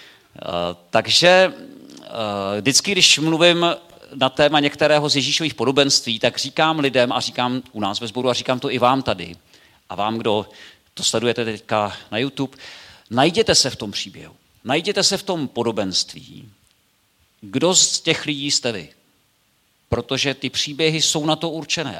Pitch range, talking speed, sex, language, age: 115-155 Hz, 160 wpm, male, Czech, 50-69